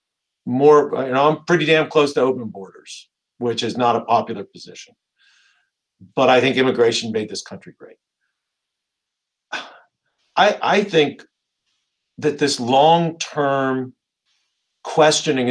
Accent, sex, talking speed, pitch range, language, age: American, male, 120 wpm, 120-150 Hz, English, 50-69